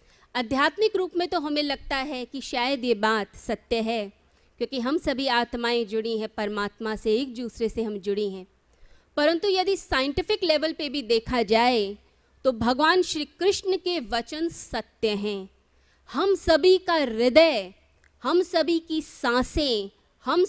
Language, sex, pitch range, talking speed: Hindi, female, 235-325 Hz, 150 wpm